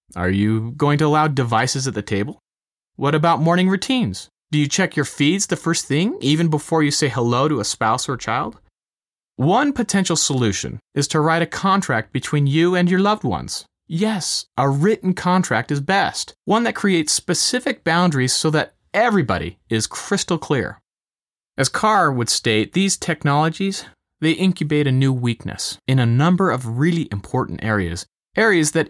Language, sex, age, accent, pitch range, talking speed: English, male, 30-49, American, 125-185 Hz, 170 wpm